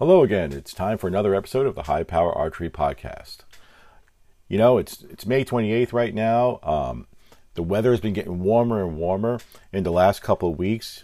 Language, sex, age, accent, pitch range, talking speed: English, male, 40-59, American, 85-115 Hz, 195 wpm